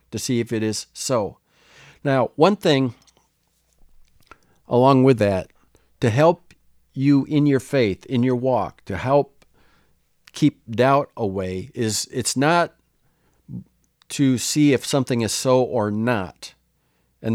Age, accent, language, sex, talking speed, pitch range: 50-69, American, English, male, 130 wpm, 110-145 Hz